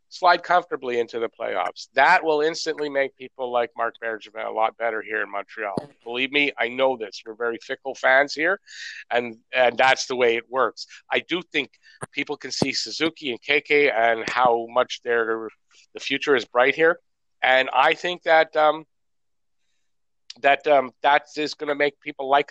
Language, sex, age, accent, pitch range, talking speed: English, male, 50-69, American, 120-150 Hz, 180 wpm